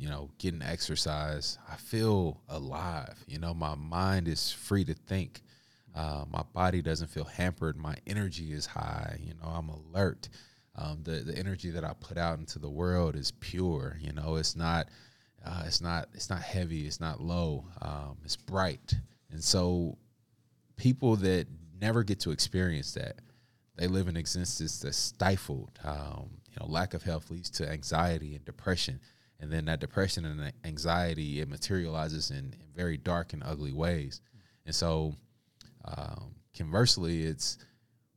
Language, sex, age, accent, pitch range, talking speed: English, male, 20-39, American, 80-95 Hz, 165 wpm